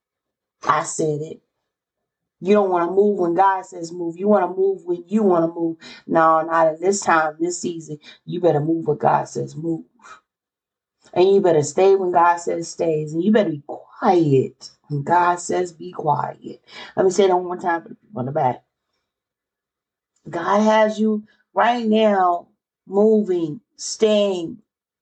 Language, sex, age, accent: English, female, 40-59, American